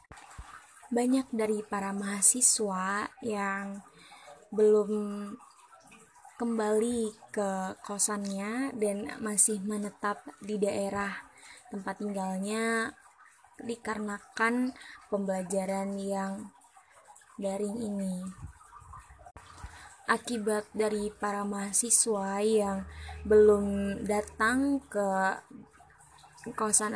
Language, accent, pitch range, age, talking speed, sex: Indonesian, native, 205-230 Hz, 20-39, 65 wpm, female